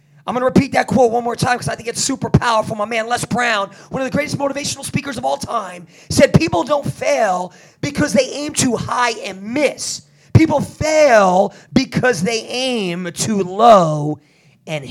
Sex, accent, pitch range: male, American, 175-235 Hz